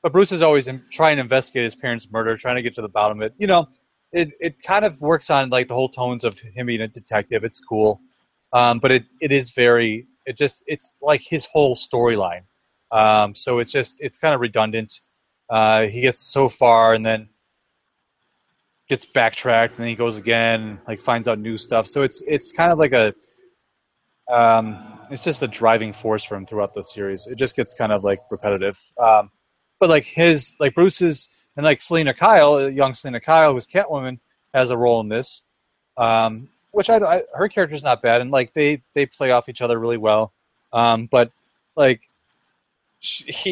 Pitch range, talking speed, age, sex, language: 115-150 Hz, 200 wpm, 30-49, male, English